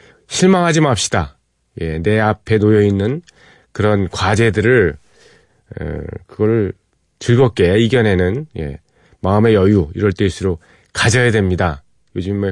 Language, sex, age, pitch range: Korean, male, 40-59, 90-125 Hz